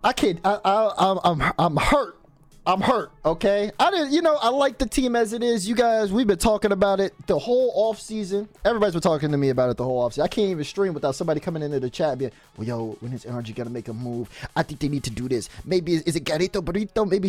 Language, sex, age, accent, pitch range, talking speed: English, male, 20-39, American, 150-200 Hz, 270 wpm